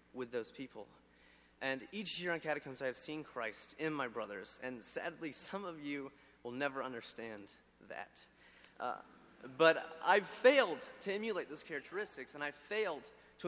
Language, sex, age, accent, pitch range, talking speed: English, male, 30-49, American, 125-175 Hz, 155 wpm